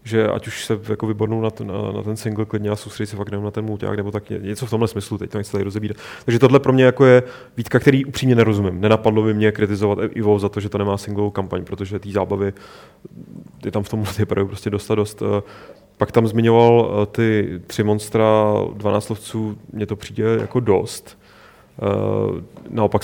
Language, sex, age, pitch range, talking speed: Czech, male, 30-49, 105-110 Hz, 210 wpm